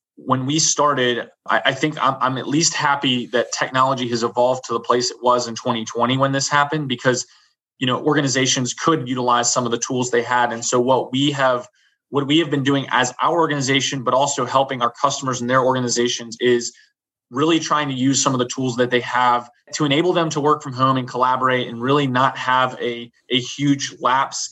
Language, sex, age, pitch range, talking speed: English, male, 20-39, 120-135 Hz, 210 wpm